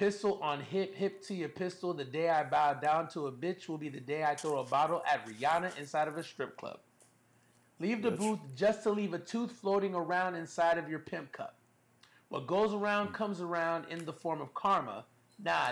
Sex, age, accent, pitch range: male, 30-49, American, 155-200 Hz